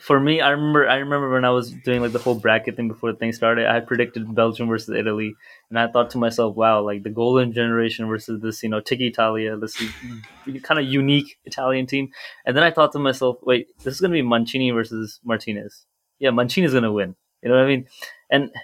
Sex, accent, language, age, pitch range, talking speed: male, Indian, English, 20-39, 120-145 Hz, 225 wpm